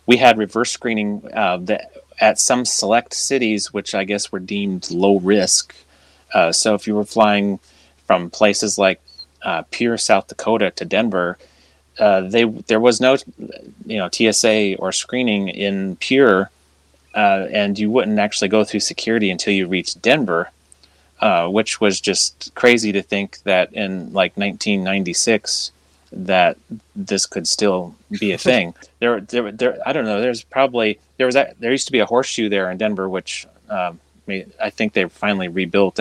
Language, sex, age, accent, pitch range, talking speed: English, male, 30-49, American, 90-110 Hz, 165 wpm